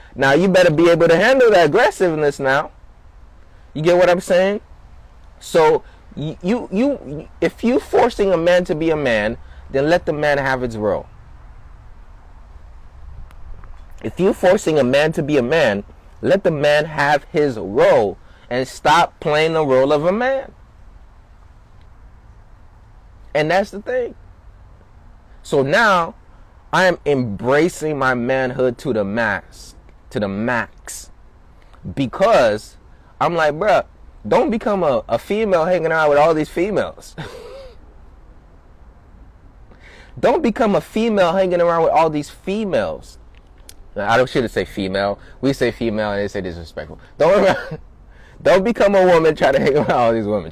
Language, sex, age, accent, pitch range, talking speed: English, male, 20-39, American, 105-175 Hz, 150 wpm